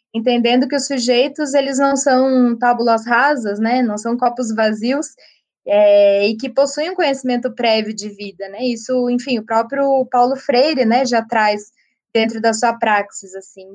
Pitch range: 225-270 Hz